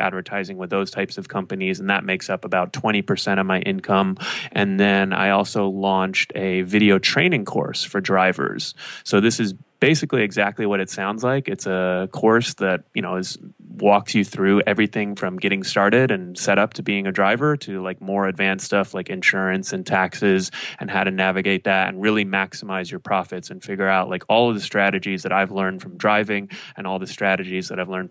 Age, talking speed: 20-39, 205 wpm